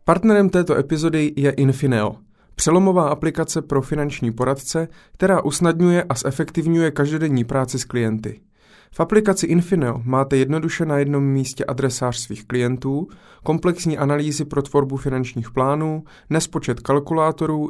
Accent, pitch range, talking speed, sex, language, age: native, 125-160 Hz, 125 wpm, male, Czech, 30-49